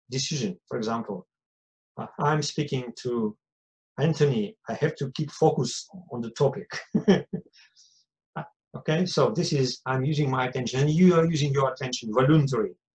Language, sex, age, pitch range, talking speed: English, male, 50-69, 125-185 Hz, 140 wpm